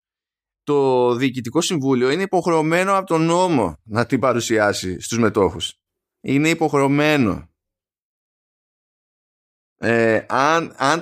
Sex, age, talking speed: male, 20-39, 100 wpm